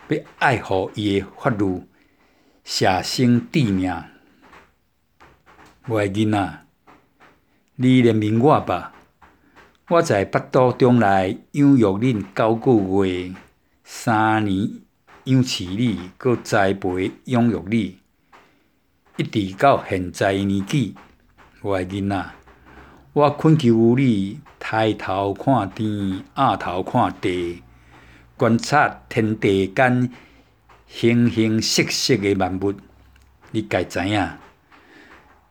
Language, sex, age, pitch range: Chinese, male, 60-79, 95-125 Hz